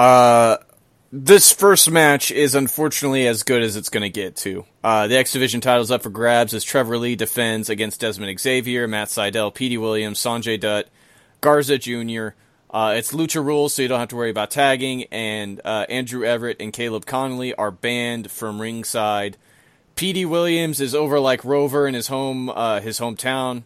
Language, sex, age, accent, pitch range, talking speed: English, male, 30-49, American, 115-135 Hz, 185 wpm